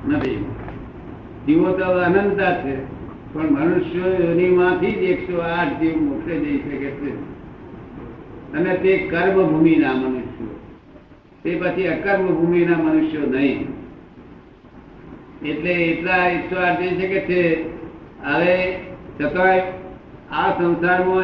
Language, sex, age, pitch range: Gujarati, male, 60-79, 165-185 Hz